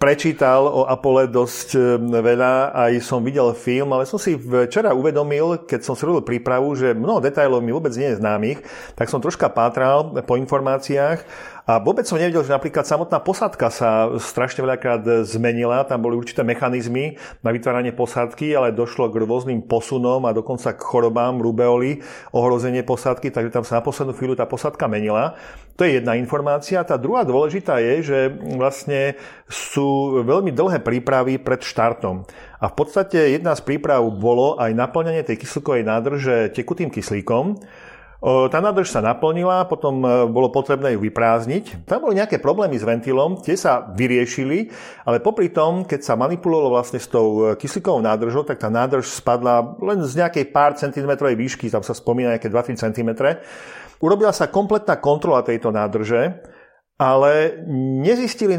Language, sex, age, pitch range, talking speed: Slovak, male, 40-59, 120-145 Hz, 160 wpm